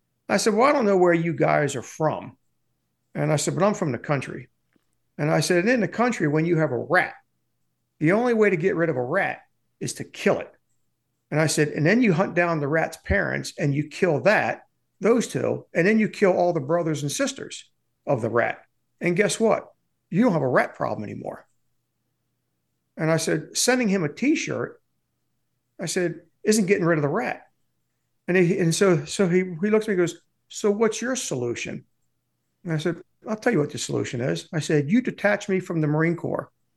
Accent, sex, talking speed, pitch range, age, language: American, male, 215 wpm, 155-200 Hz, 50-69, English